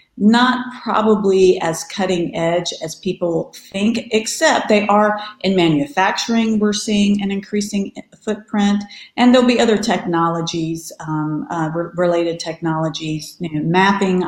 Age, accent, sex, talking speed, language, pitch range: 40-59, American, female, 120 wpm, English, 165-195 Hz